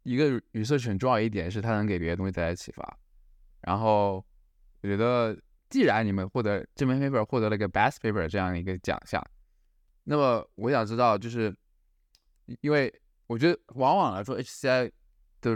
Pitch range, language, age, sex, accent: 90-120 Hz, Chinese, 20-39, male, native